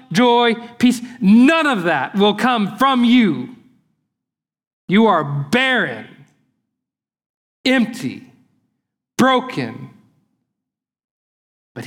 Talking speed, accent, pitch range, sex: 75 wpm, American, 125-195 Hz, male